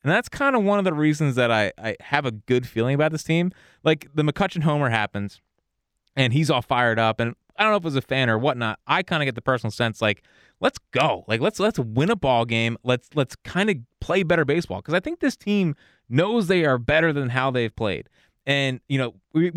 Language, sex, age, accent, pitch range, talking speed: English, male, 20-39, American, 120-175 Hz, 245 wpm